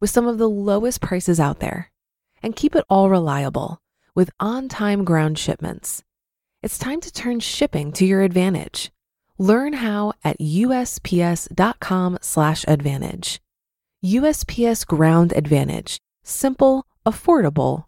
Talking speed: 115 wpm